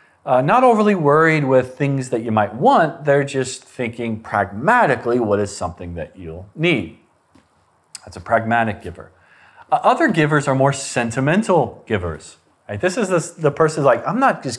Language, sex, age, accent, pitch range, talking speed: English, male, 30-49, American, 110-155 Hz, 170 wpm